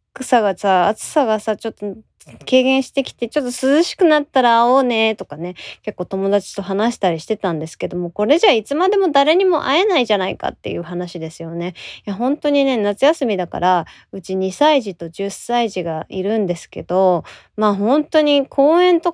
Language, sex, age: Japanese, female, 20-39